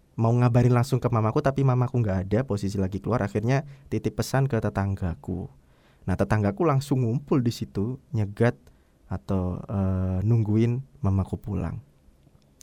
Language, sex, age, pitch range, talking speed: Indonesian, male, 20-39, 90-130 Hz, 140 wpm